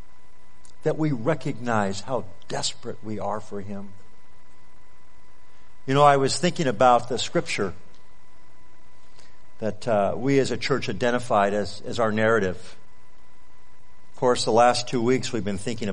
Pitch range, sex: 110-140 Hz, male